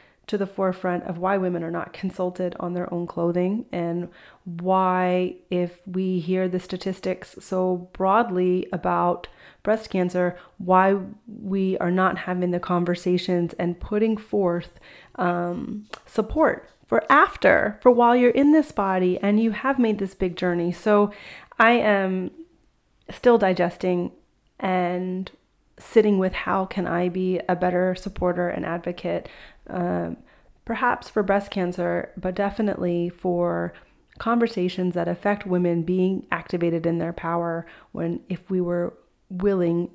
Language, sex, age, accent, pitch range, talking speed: English, female, 30-49, American, 175-195 Hz, 135 wpm